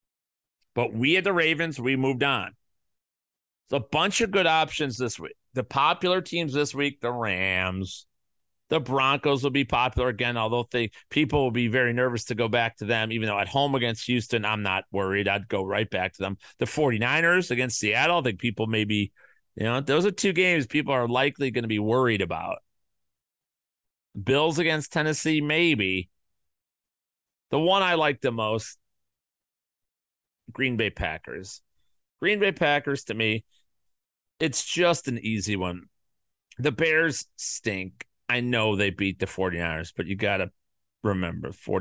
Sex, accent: male, American